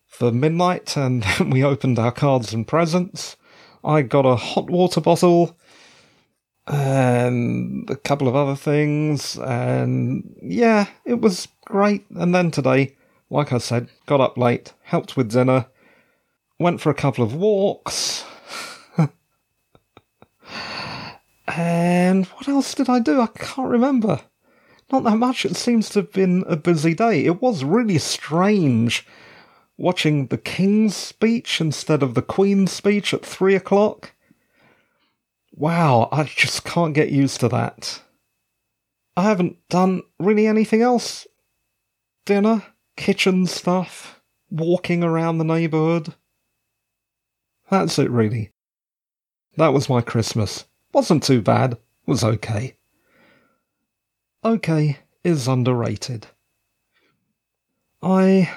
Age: 40-59